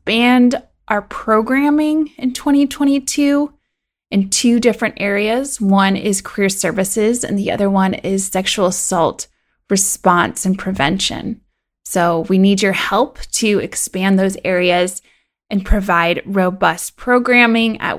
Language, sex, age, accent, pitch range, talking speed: English, female, 20-39, American, 195-240 Hz, 120 wpm